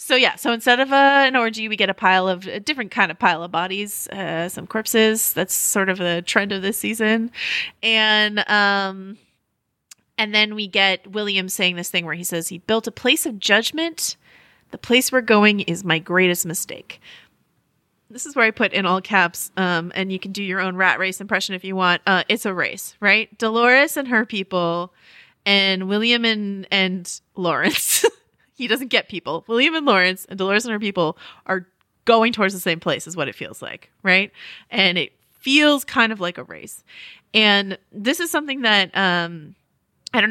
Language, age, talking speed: English, 30-49, 200 wpm